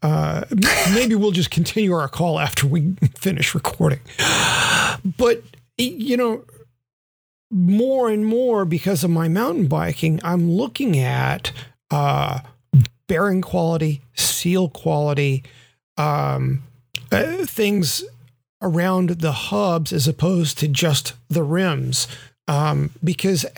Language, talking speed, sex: English, 110 wpm, male